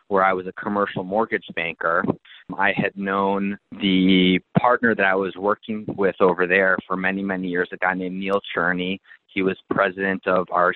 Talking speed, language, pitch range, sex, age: 185 wpm, English, 95-105 Hz, male, 30-49